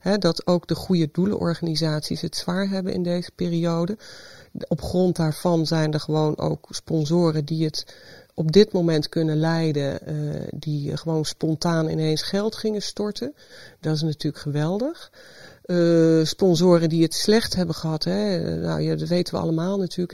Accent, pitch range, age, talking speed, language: Dutch, 160-190 Hz, 40-59, 160 wpm, Dutch